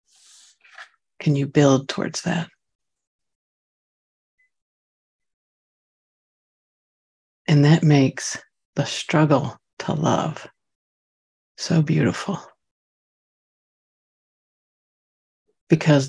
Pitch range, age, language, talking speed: 130-155 Hz, 60-79, English, 55 wpm